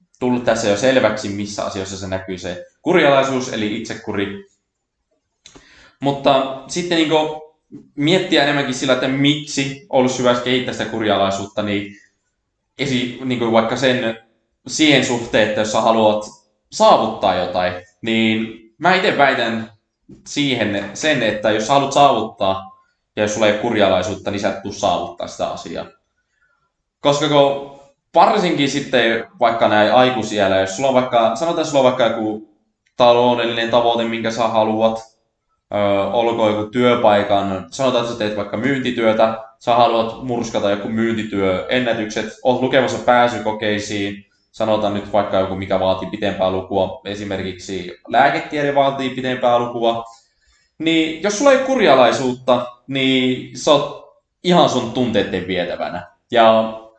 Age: 20-39